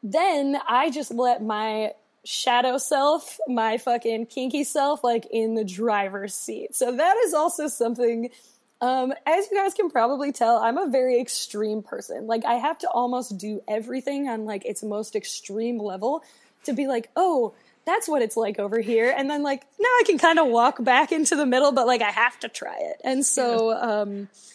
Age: 20-39